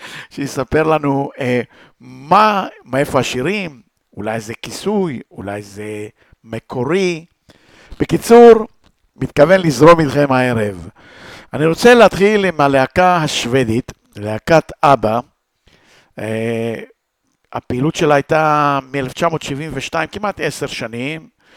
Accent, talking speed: Italian, 90 wpm